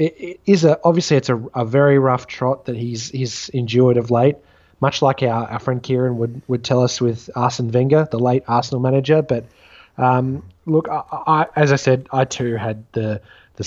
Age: 20-39